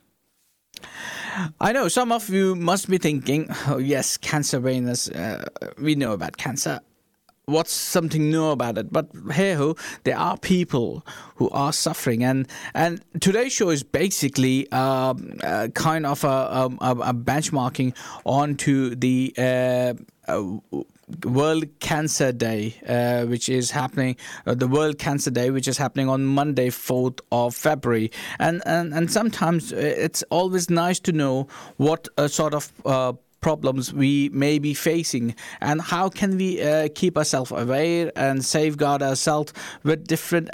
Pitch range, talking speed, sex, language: 130-165 Hz, 150 wpm, male, English